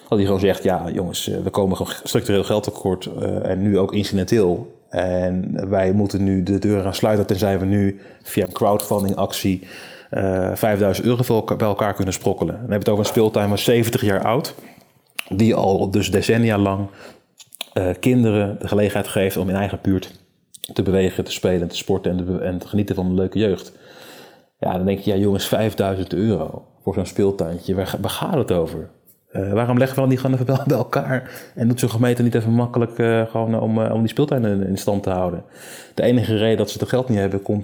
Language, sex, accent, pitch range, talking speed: Dutch, male, Dutch, 95-115 Hz, 210 wpm